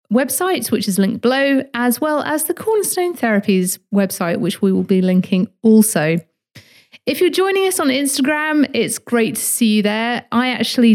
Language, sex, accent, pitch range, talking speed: English, female, British, 190-245 Hz, 175 wpm